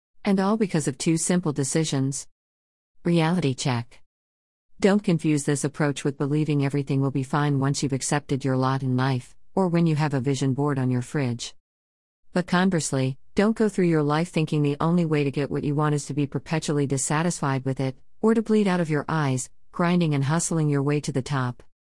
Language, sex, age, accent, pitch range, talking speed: English, female, 50-69, American, 130-165 Hz, 205 wpm